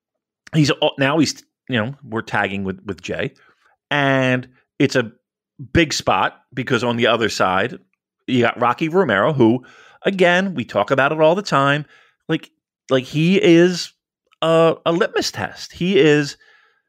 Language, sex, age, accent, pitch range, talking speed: English, male, 40-59, American, 135-190 Hz, 155 wpm